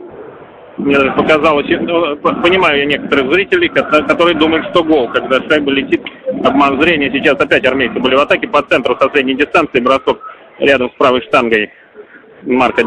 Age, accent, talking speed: 30-49, native, 165 wpm